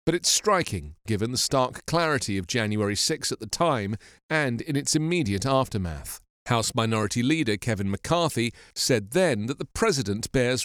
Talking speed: 165 wpm